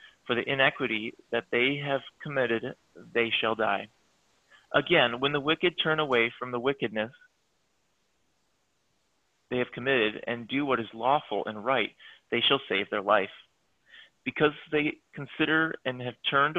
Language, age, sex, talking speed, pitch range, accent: English, 30-49, male, 145 wpm, 110-145 Hz, American